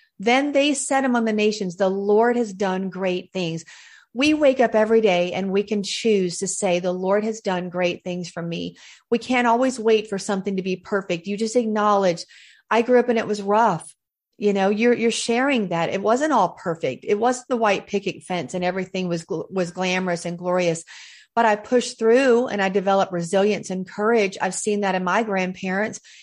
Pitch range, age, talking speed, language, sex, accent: 190-240 Hz, 40-59, 205 wpm, English, female, American